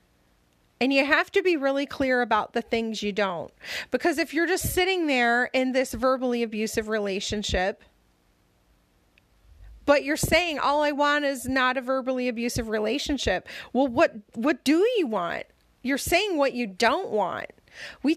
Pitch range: 210-275 Hz